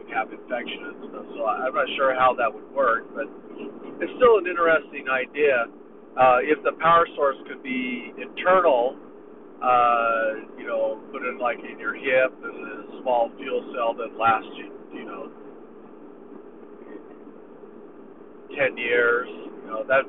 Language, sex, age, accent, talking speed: English, male, 50-69, American, 150 wpm